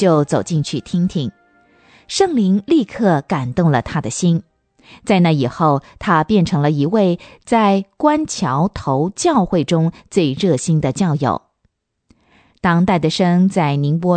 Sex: female